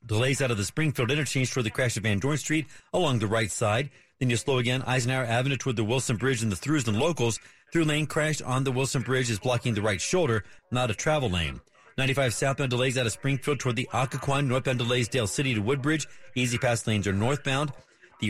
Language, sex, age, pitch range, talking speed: English, male, 40-59, 115-135 Hz, 225 wpm